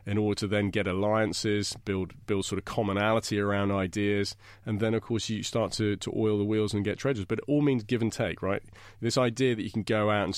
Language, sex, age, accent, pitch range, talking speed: English, male, 30-49, British, 100-120 Hz, 250 wpm